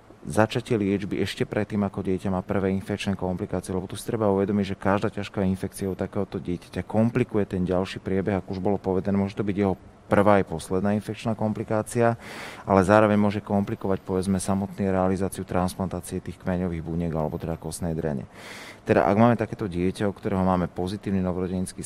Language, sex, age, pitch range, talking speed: Slovak, male, 30-49, 90-105 Hz, 175 wpm